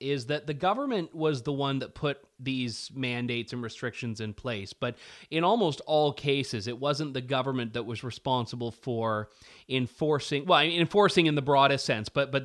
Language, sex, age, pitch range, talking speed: English, male, 30-49, 115-150 Hz, 180 wpm